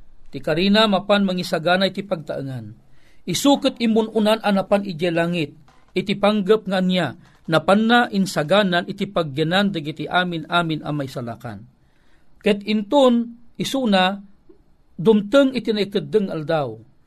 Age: 40-59